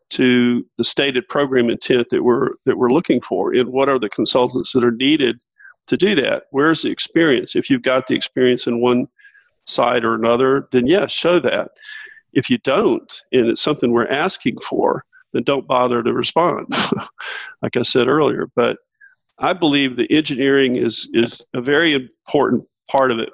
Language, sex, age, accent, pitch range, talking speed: English, male, 50-69, American, 120-150 Hz, 180 wpm